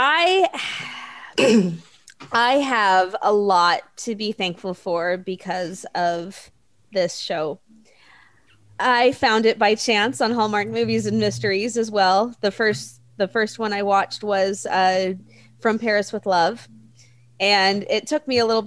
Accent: American